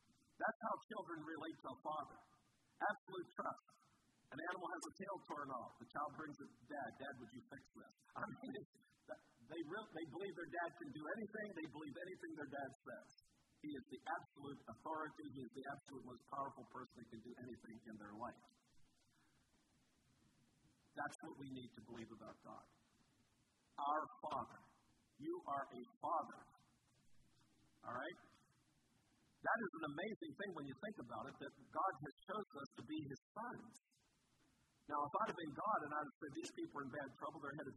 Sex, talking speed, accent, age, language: male, 180 wpm, American, 50-69, English